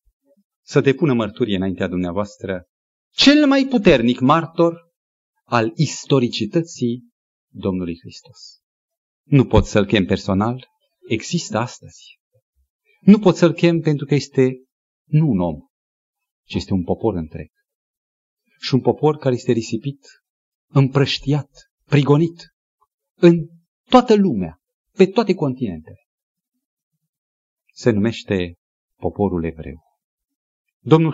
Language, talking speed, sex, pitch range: Romanian, 105 wpm, male, 125-195 Hz